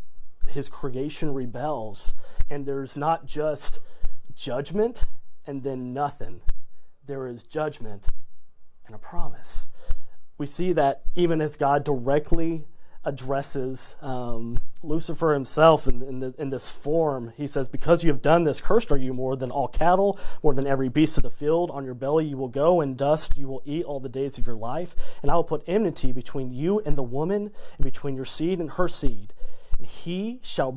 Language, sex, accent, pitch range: English, male, American, 125-155 Hz